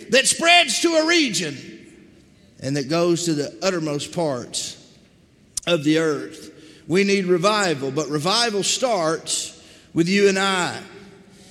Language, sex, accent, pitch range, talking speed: English, male, American, 180-275 Hz, 130 wpm